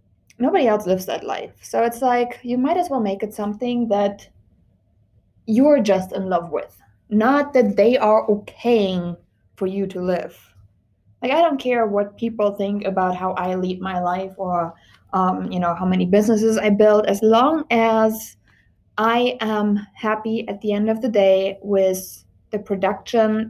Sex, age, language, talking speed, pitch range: female, 20-39, English, 170 wpm, 185-235 Hz